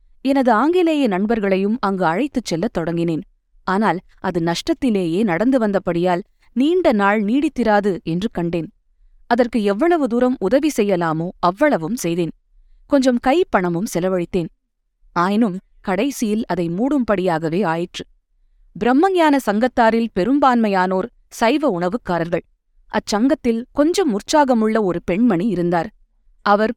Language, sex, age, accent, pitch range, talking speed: Tamil, female, 20-39, native, 180-255 Hz, 95 wpm